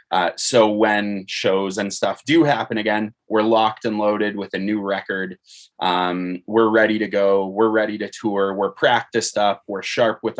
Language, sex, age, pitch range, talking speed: English, male, 20-39, 95-110 Hz, 185 wpm